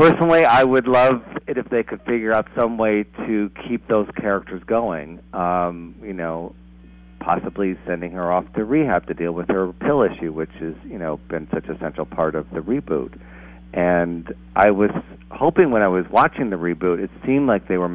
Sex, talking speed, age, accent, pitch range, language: male, 200 wpm, 40-59, American, 75-105 Hz, English